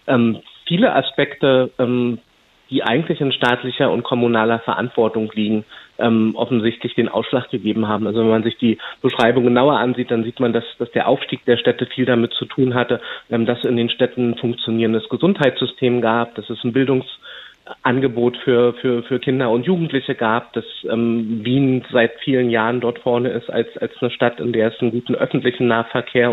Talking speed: 180 wpm